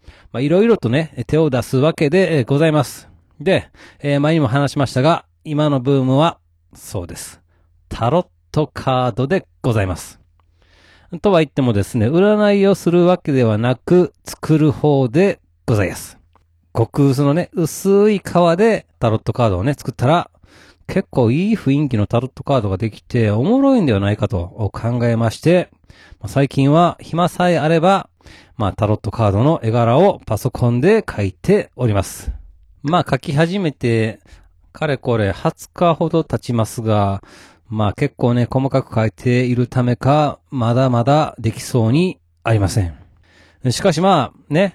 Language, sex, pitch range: Japanese, male, 105-165 Hz